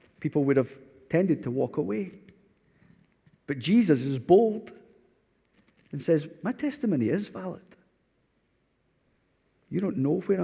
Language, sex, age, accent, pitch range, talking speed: English, male, 40-59, British, 130-160 Hz, 120 wpm